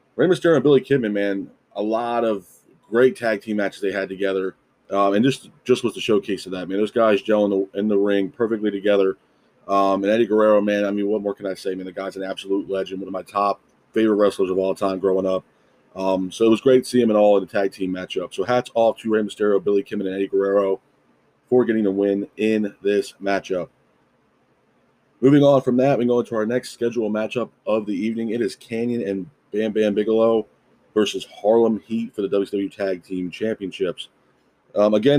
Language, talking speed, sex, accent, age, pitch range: English, 220 wpm, male, American, 30-49, 100-120 Hz